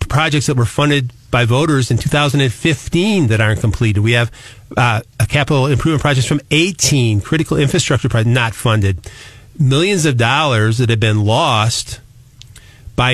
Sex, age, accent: male, 40-59, American